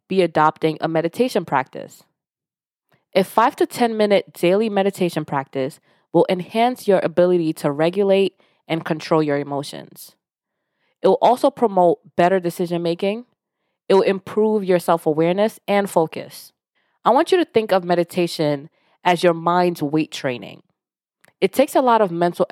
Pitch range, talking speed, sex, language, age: 160-210 Hz, 145 wpm, female, English, 20-39